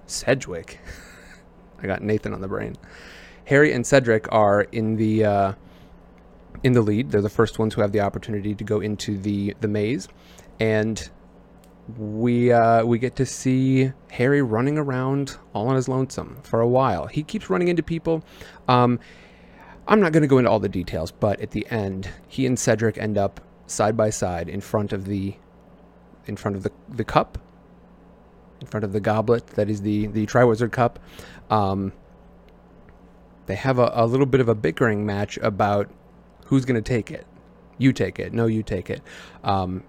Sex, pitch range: male, 100-125 Hz